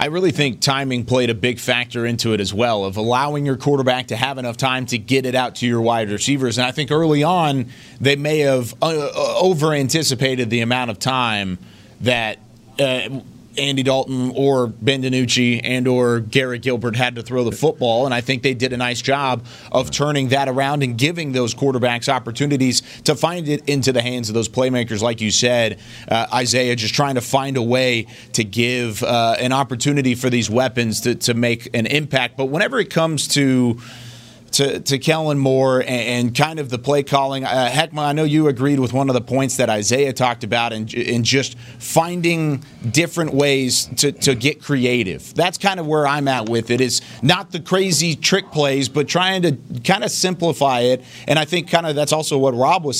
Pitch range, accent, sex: 120-145 Hz, American, male